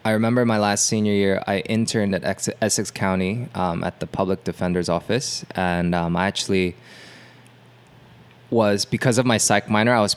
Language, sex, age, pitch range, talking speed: English, male, 20-39, 90-110 Hz, 175 wpm